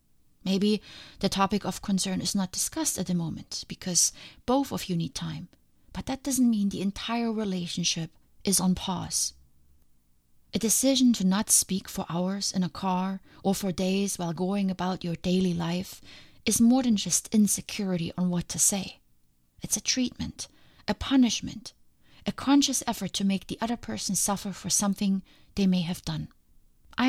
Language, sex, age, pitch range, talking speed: English, female, 30-49, 175-215 Hz, 170 wpm